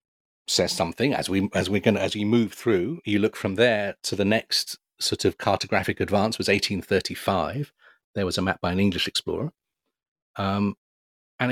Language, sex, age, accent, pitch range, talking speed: English, male, 40-59, British, 95-110 Hz, 170 wpm